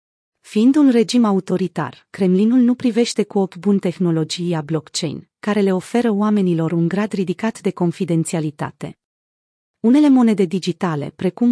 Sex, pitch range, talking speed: female, 175-220 Hz, 130 wpm